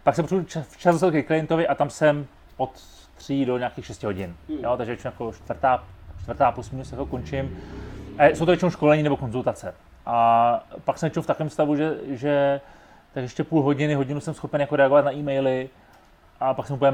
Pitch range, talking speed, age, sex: 125-150 Hz, 200 wpm, 30-49, male